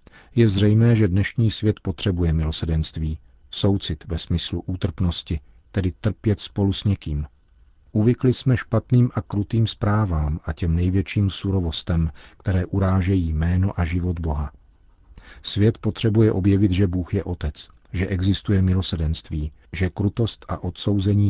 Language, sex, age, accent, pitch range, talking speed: Czech, male, 50-69, native, 85-100 Hz, 130 wpm